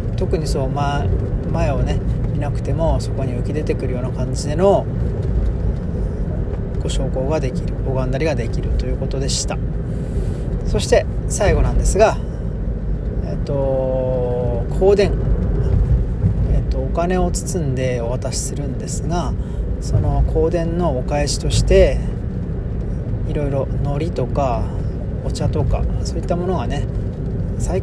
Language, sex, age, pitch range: Japanese, male, 40-59, 100-140 Hz